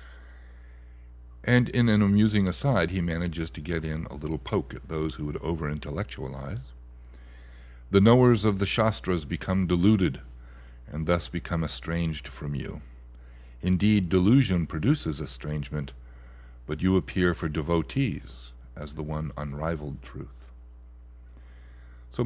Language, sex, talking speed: English, male, 125 wpm